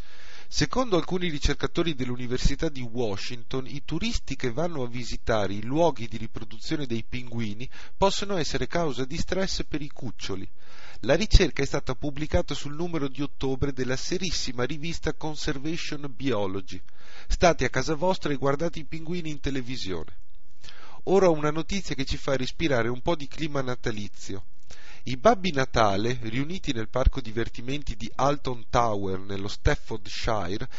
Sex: male